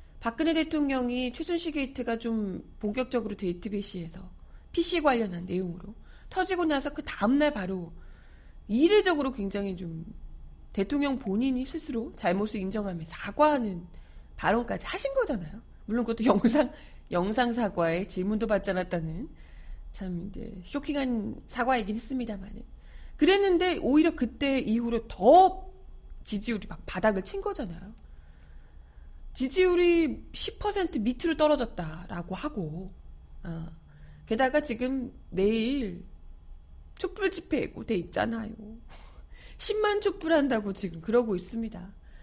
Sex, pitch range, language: female, 185-285 Hz, Korean